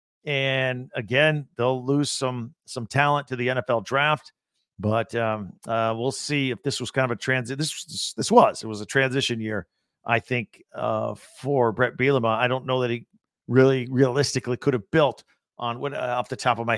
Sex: male